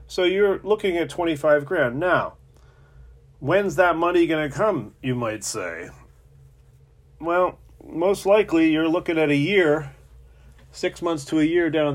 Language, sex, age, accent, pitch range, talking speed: English, male, 40-59, American, 110-150 Hz, 150 wpm